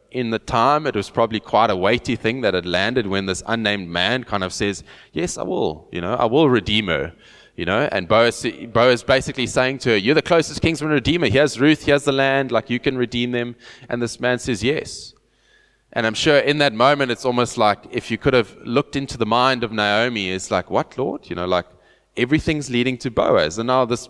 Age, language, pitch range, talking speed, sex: 20-39, English, 110-135 Hz, 230 wpm, male